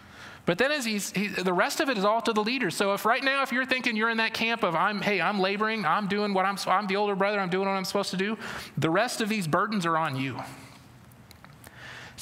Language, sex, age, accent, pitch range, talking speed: English, male, 30-49, American, 135-200 Hz, 265 wpm